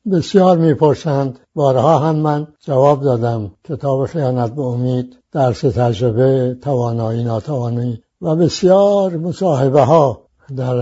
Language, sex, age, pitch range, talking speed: English, male, 60-79, 135-165 Hz, 115 wpm